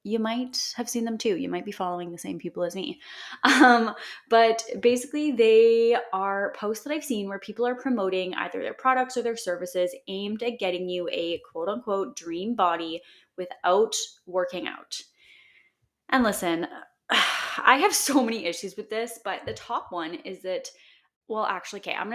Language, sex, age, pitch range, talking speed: English, female, 20-39, 180-245 Hz, 175 wpm